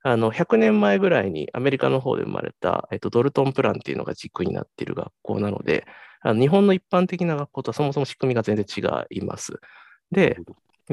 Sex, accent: male, native